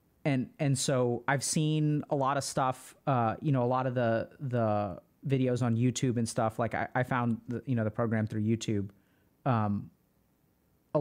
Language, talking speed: English, 190 wpm